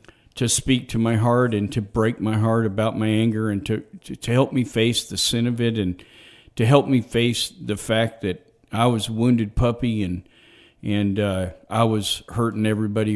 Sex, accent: male, American